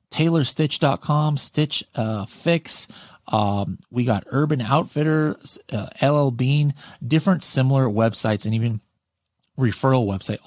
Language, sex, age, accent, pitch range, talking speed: English, male, 30-49, American, 110-140 Hz, 110 wpm